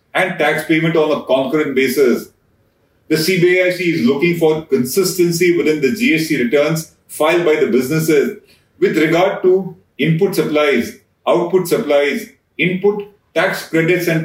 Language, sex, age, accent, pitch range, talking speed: English, male, 40-59, Indian, 150-185 Hz, 135 wpm